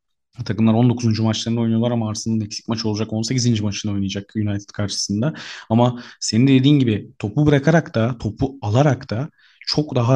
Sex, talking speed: male, 160 wpm